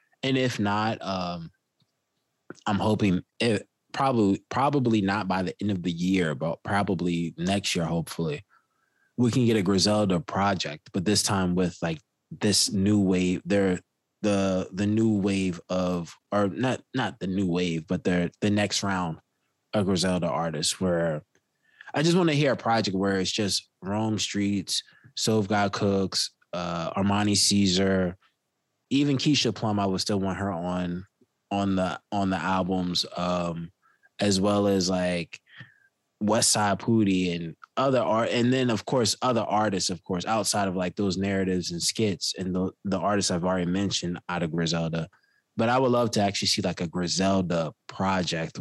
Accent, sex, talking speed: American, male, 165 wpm